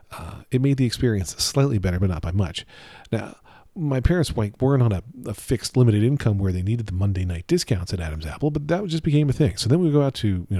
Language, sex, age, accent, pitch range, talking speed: English, male, 40-59, American, 90-130 Hz, 250 wpm